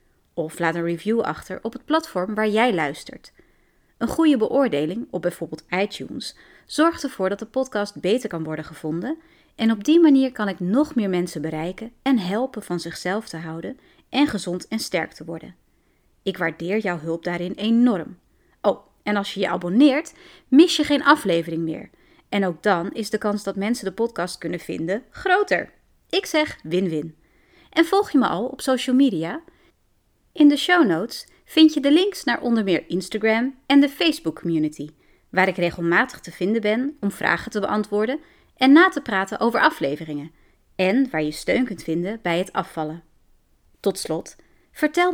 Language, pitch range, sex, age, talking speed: Dutch, 175-275 Hz, female, 30-49, 175 wpm